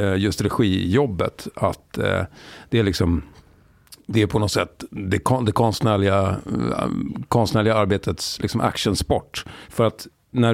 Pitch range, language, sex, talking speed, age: 90-115 Hz, Swedish, male, 135 wpm, 50-69